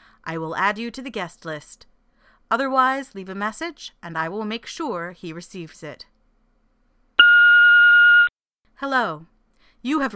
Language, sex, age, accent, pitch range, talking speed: English, female, 30-49, American, 175-245 Hz, 135 wpm